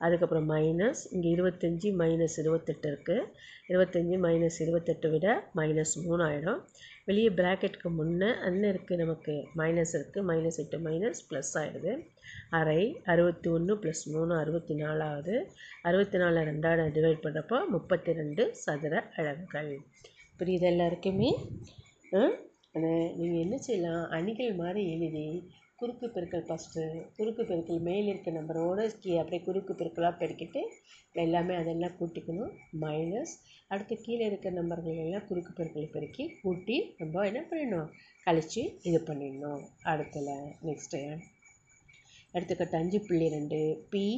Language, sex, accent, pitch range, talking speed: Tamil, female, native, 160-185 Hz, 120 wpm